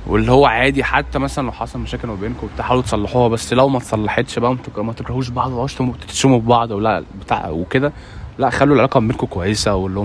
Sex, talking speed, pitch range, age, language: male, 195 wpm, 100-120 Hz, 20-39, Arabic